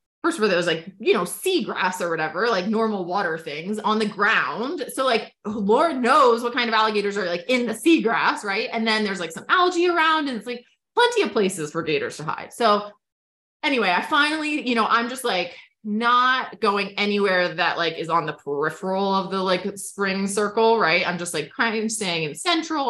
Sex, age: female, 20-39